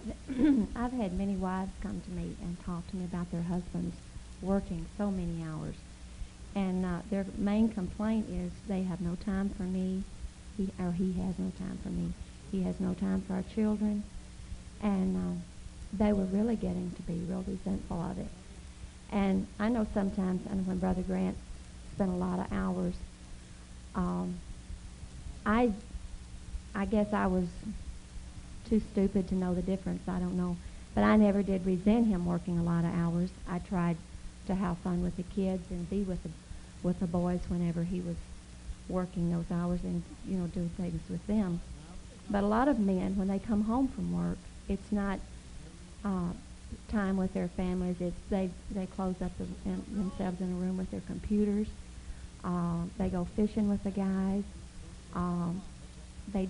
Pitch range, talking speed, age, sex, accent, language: 175-200 Hz, 170 wpm, 50-69, female, American, English